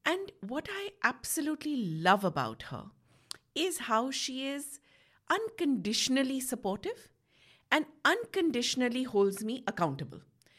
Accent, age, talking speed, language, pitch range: Indian, 50-69, 100 wpm, English, 175-260 Hz